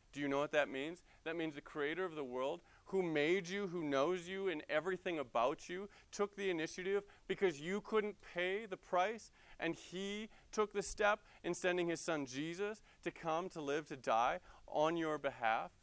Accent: American